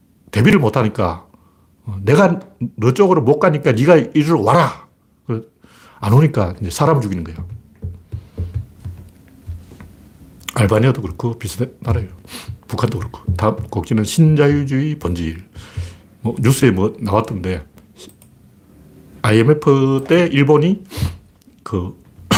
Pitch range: 100-145 Hz